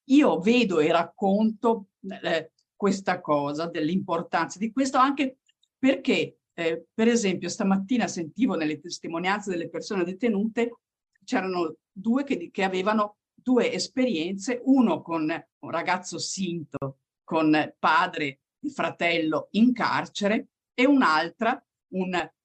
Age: 50-69